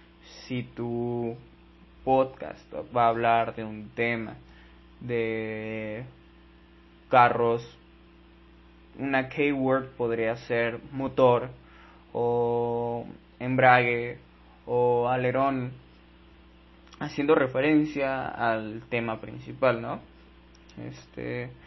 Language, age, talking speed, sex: Croatian, 20-39, 75 wpm, male